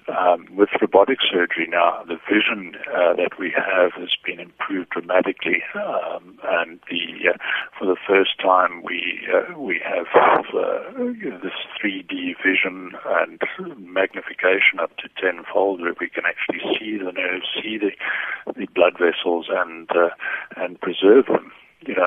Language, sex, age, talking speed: English, male, 60-79, 150 wpm